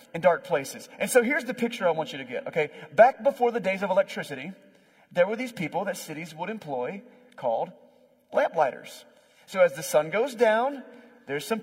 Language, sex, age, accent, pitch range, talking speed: English, male, 30-49, American, 160-235 Hz, 200 wpm